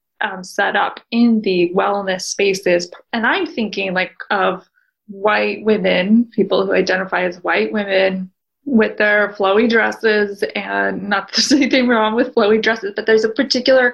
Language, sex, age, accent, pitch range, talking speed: English, female, 20-39, American, 205-250 Hz, 155 wpm